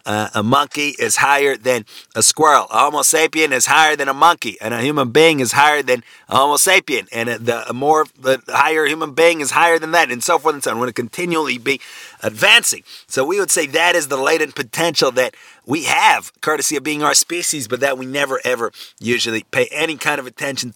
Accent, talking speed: American, 230 wpm